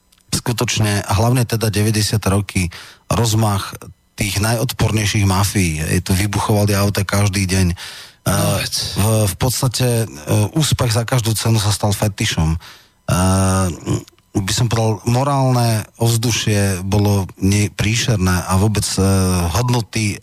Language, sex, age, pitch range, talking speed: Slovak, male, 30-49, 100-120 Hz, 100 wpm